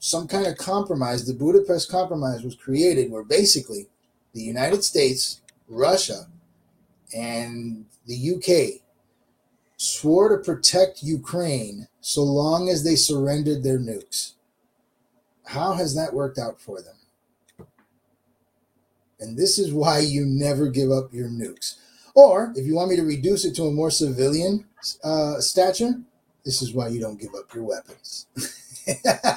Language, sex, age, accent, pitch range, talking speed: English, male, 30-49, American, 135-195 Hz, 140 wpm